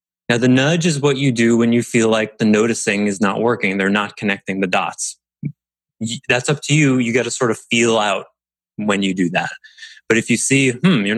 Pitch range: 95-125 Hz